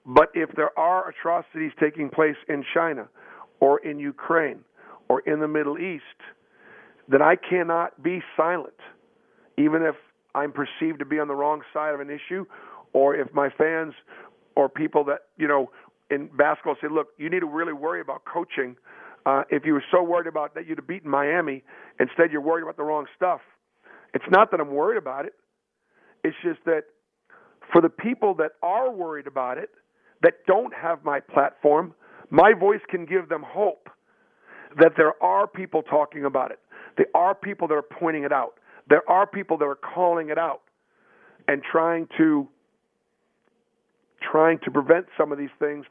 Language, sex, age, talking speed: English, male, 50-69, 180 wpm